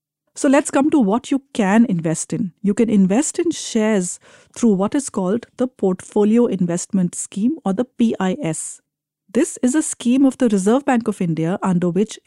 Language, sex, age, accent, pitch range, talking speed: English, female, 50-69, Indian, 185-240 Hz, 180 wpm